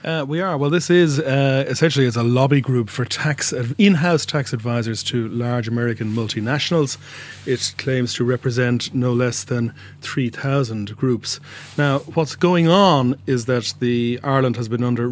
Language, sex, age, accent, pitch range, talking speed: English, male, 30-49, Irish, 115-140 Hz, 165 wpm